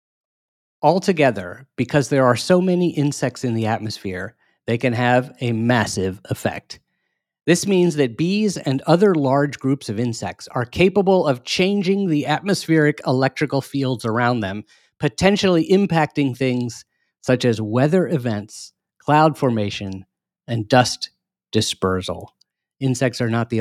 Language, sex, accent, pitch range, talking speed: English, male, American, 105-145 Hz, 130 wpm